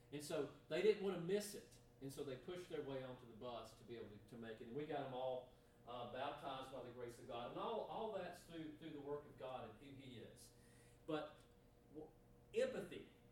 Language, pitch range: English, 125-165 Hz